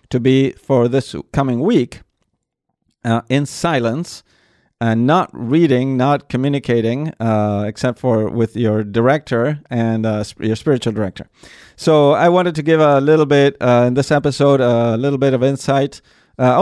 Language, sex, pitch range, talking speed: English, male, 120-150 Hz, 155 wpm